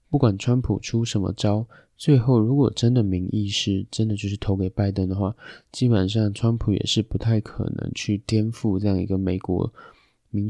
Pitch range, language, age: 100-115 Hz, Chinese, 20-39